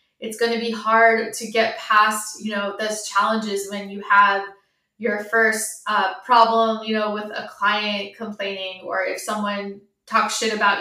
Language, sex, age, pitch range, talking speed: English, female, 20-39, 205-230 Hz, 170 wpm